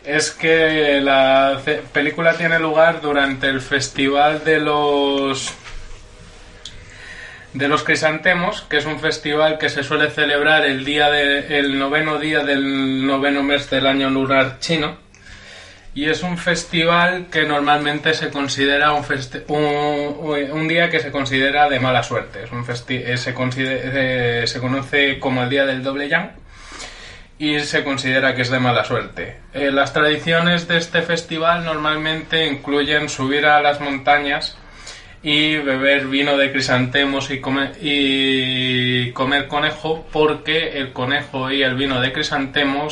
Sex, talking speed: male, 150 wpm